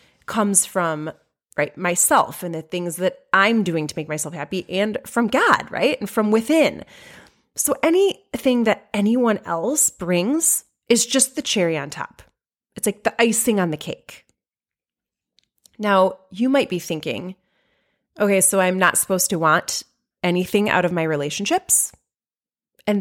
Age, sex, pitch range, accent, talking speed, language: 30-49, female, 165-225 Hz, American, 150 wpm, English